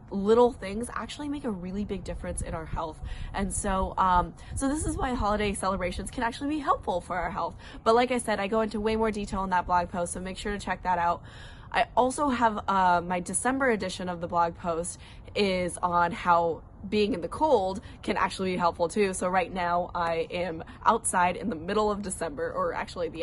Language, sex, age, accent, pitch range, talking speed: English, female, 20-39, American, 175-210 Hz, 220 wpm